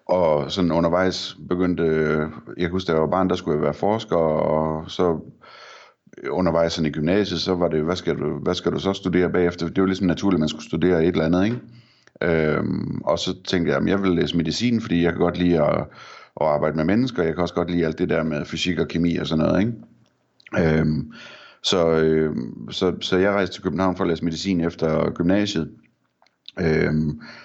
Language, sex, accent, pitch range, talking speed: Danish, male, native, 80-90 Hz, 215 wpm